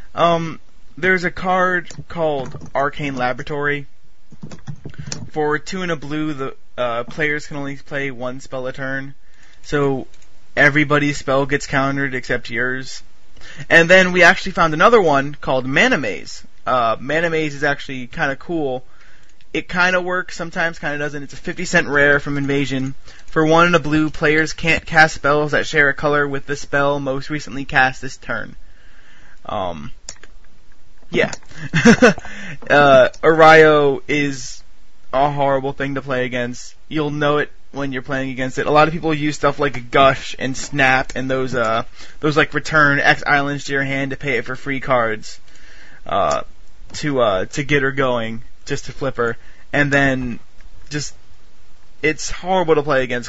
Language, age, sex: English, 20-39, male